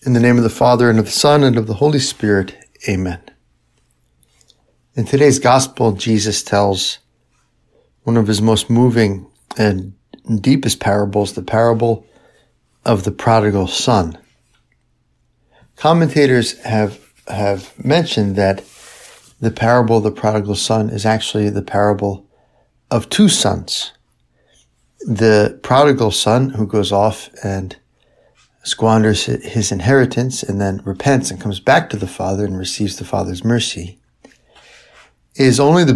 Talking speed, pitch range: 135 wpm, 95-120 Hz